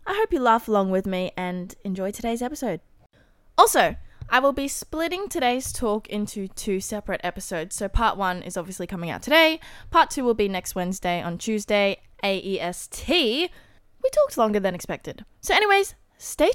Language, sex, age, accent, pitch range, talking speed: English, female, 20-39, Australian, 190-255 Hz, 170 wpm